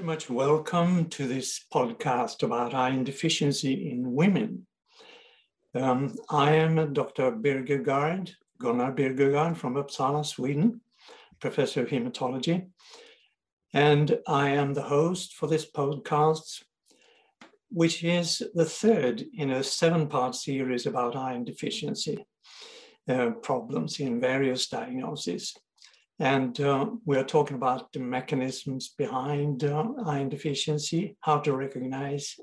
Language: English